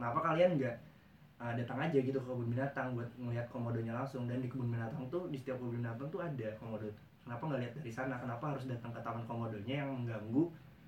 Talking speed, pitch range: 220 wpm, 115-135 Hz